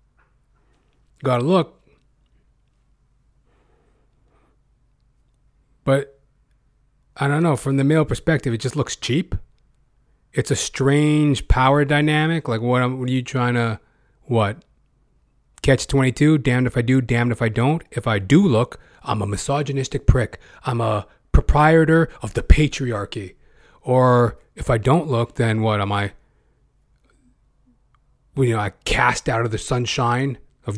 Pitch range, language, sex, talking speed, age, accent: 115-145 Hz, English, male, 135 wpm, 30-49, American